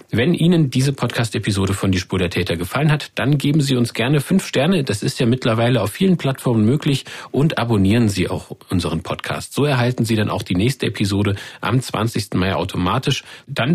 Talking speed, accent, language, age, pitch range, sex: 195 wpm, German, German, 40-59, 100-130 Hz, male